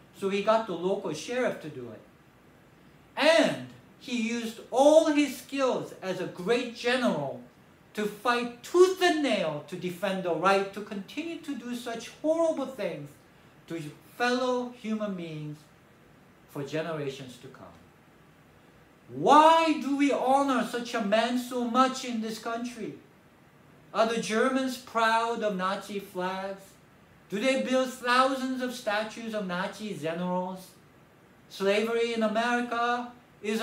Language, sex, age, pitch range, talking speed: English, male, 60-79, 195-255 Hz, 135 wpm